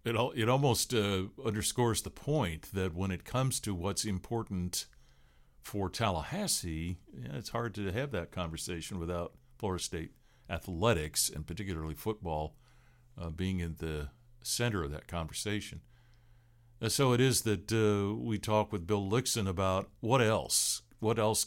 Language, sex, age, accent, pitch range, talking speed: English, male, 60-79, American, 85-110 Hz, 150 wpm